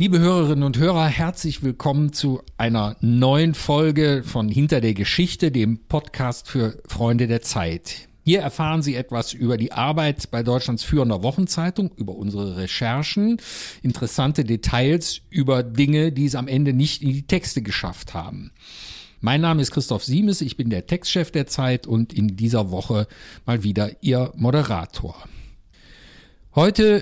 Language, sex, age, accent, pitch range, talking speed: German, male, 50-69, German, 115-155 Hz, 150 wpm